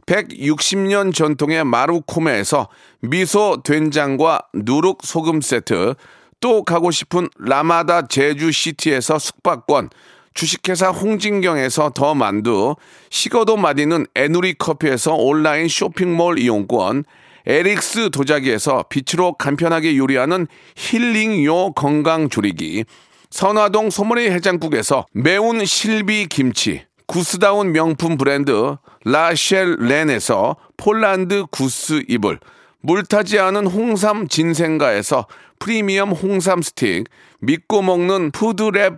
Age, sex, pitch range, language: 40-59, male, 155-200 Hz, Korean